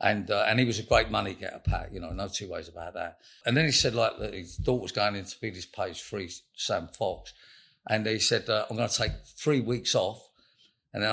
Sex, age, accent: male, 50-69, British